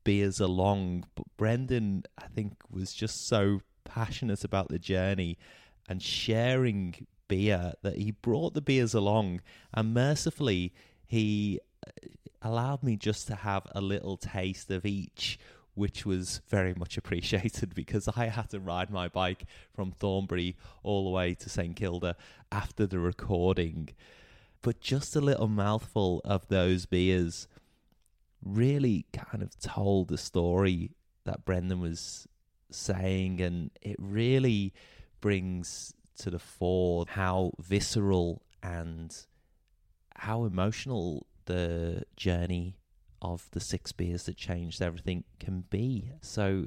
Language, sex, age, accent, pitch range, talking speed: English, male, 20-39, British, 90-105 Hz, 130 wpm